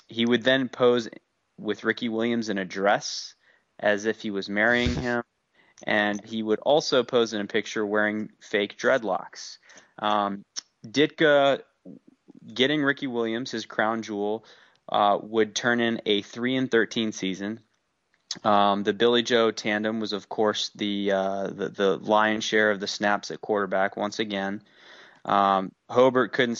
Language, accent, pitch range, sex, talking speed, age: English, American, 105-120 Hz, male, 155 wpm, 20-39